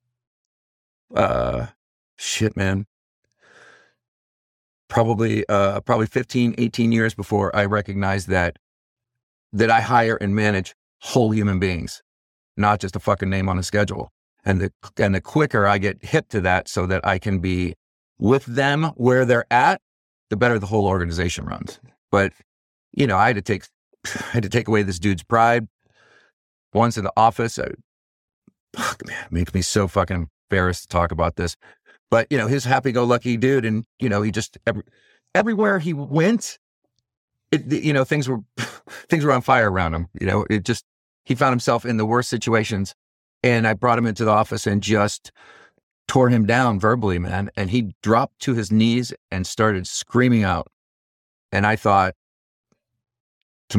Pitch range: 90-120 Hz